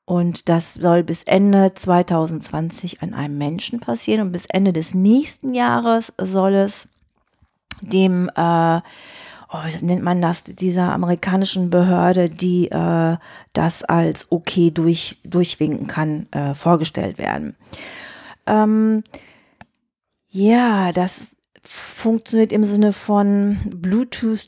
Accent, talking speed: German, 115 wpm